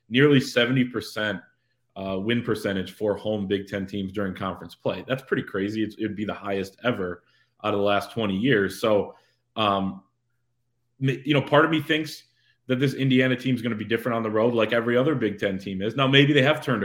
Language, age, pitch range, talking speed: English, 20-39, 100-120 Hz, 215 wpm